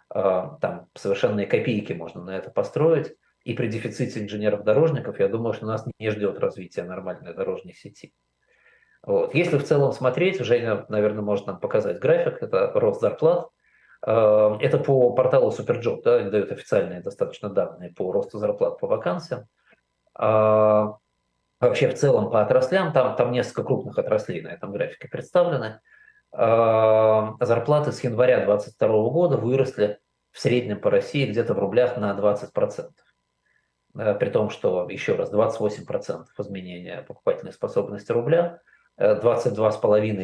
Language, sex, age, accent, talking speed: Russian, male, 20-39, native, 130 wpm